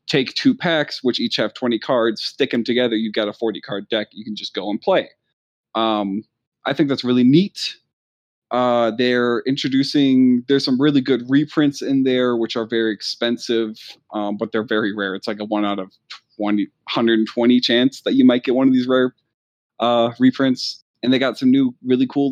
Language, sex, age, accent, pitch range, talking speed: English, male, 20-39, American, 110-130 Hz, 195 wpm